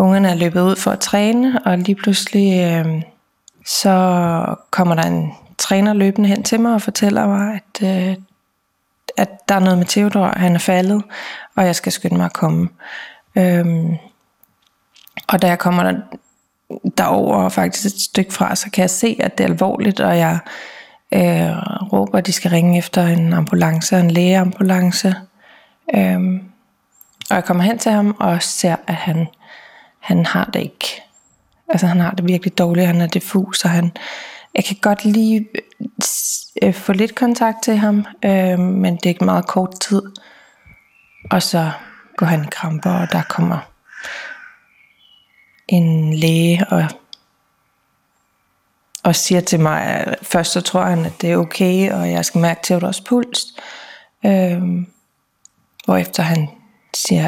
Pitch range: 170-200 Hz